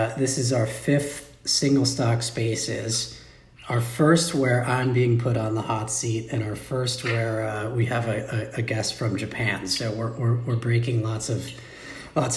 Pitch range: 110-140 Hz